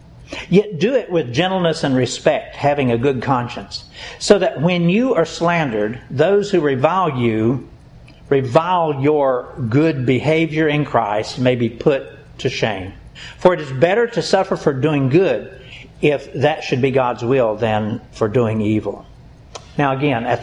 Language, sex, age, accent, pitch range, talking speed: English, male, 50-69, American, 125-170 Hz, 160 wpm